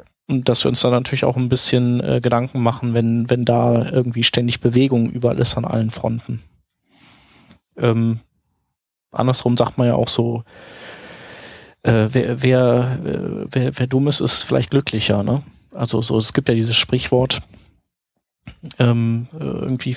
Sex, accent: male, German